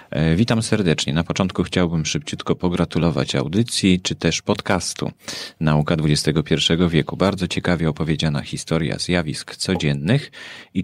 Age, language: 30-49, Polish